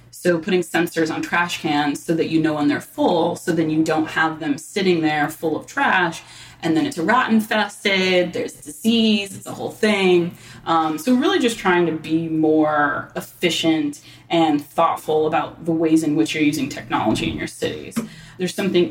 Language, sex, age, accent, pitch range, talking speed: English, female, 20-39, American, 155-180 Hz, 190 wpm